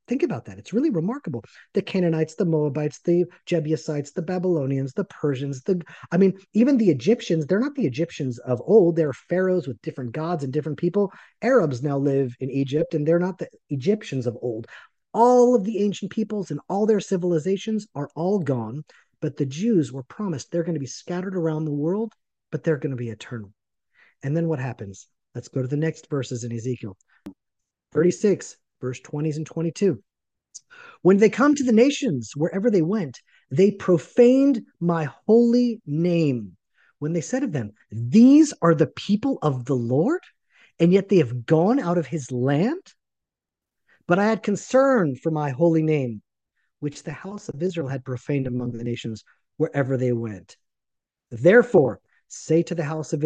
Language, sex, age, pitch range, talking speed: English, male, 30-49, 135-190 Hz, 180 wpm